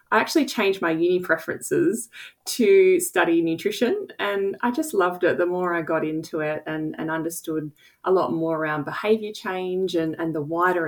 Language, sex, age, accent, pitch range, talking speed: English, female, 20-39, Australian, 155-200 Hz, 180 wpm